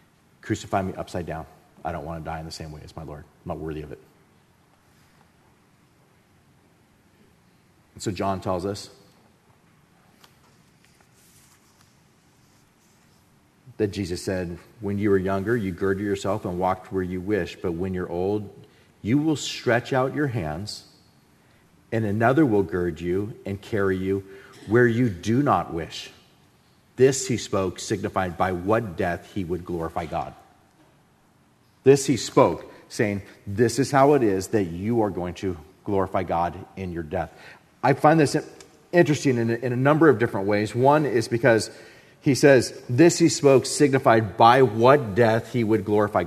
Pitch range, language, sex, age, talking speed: 95-130 Hz, English, male, 40-59, 155 wpm